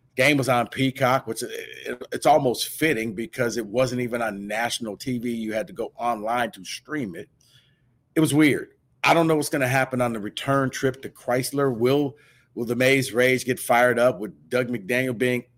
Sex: male